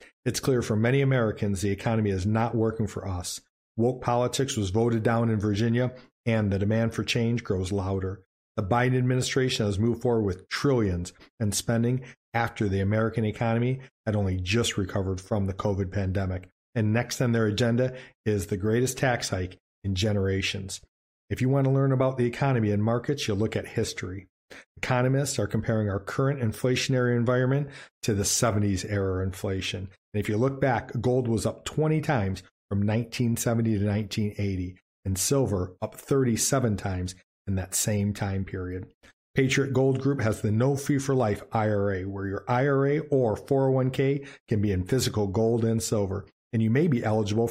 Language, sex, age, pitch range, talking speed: English, male, 40-59, 100-130 Hz, 175 wpm